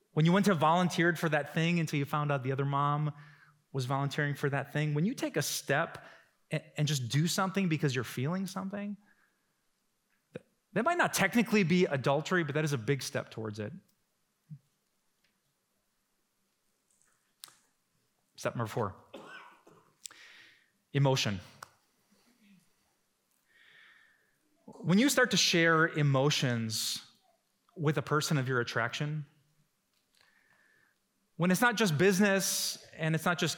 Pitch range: 145-195 Hz